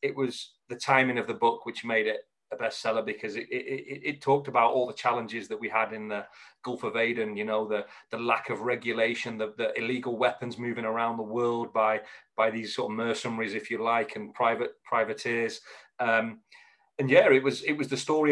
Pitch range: 115-140 Hz